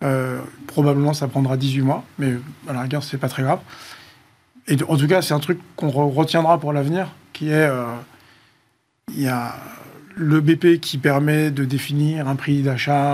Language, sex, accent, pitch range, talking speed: French, male, French, 135-155 Hz, 185 wpm